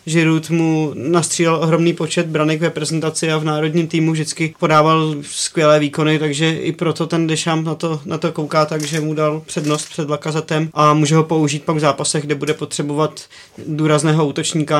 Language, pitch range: Czech, 145-160 Hz